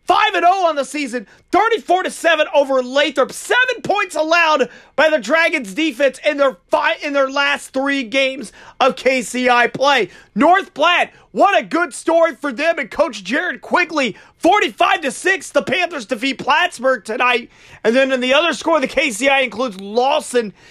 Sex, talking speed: male, 155 wpm